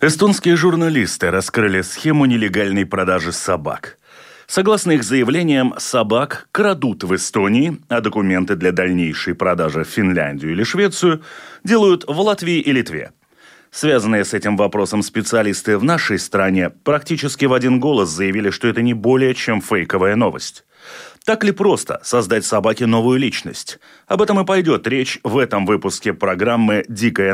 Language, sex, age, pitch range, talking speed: Russian, male, 30-49, 95-160 Hz, 145 wpm